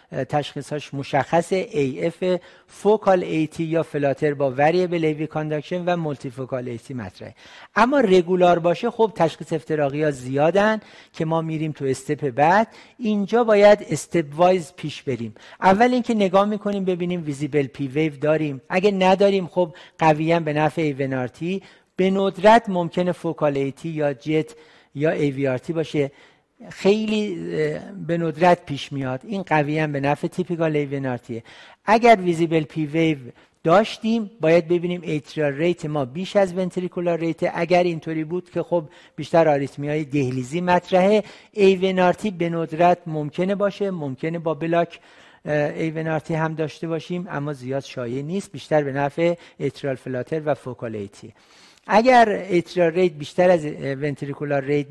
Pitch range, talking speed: 150-185 Hz, 145 wpm